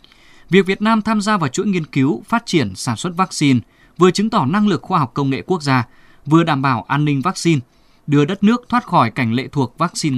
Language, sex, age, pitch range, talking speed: Vietnamese, male, 20-39, 130-190 Hz, 235 wpm